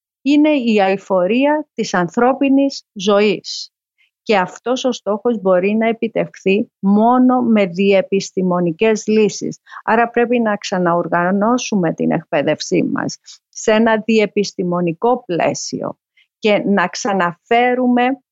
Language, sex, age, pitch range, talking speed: Greek, female, 40-59, 175-220 Hz, 100 wpm